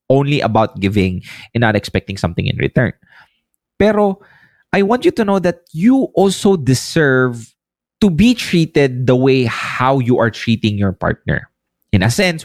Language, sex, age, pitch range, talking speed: English, male, 20-39, 105-140 Hz, 160 wpm